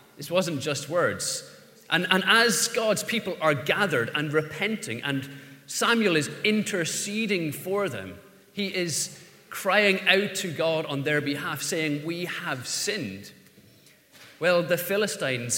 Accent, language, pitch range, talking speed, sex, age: British, English, 150-200 Hz, 135 wpm, male, 30-49